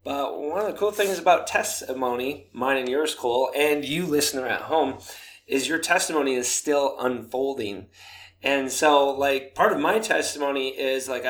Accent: American